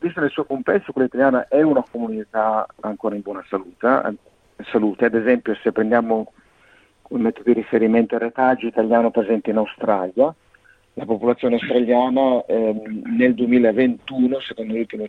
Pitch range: 110-125 Hz